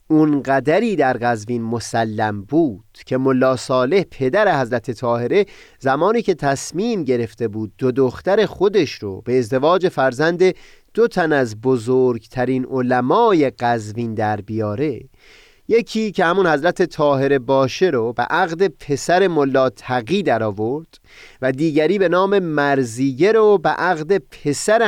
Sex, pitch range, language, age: male, 120-170 Hz, Persian, 30-49